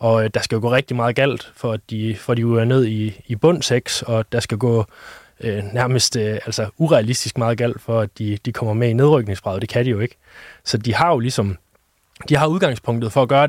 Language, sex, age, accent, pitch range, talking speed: Danish, male, 20-39, native, 115-140 Hz, 240 wpm